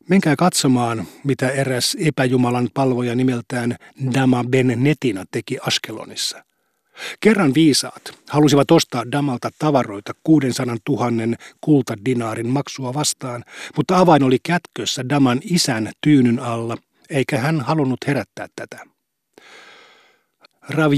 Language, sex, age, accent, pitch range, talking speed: Finnish, male, 50-69, native, 125-150 Hz, 105 wpm